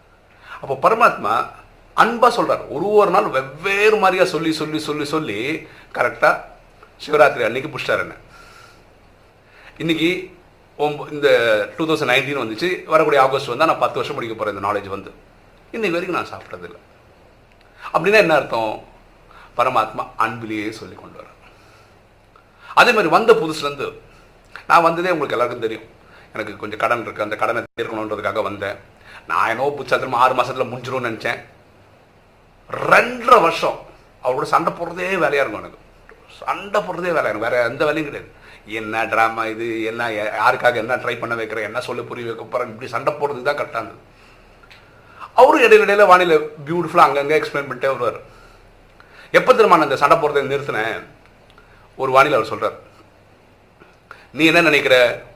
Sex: male